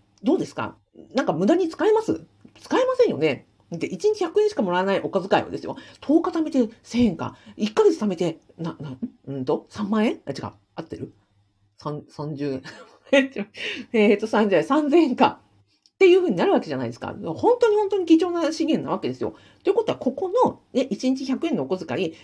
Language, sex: Japanese, female